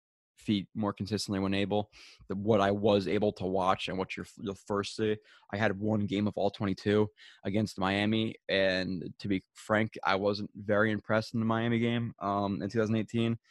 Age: 20-39